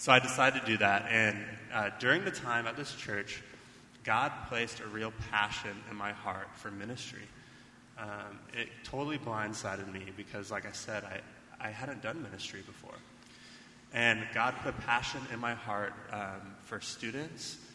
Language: English